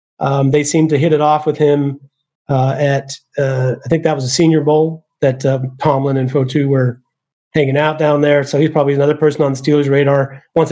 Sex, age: male, 30-49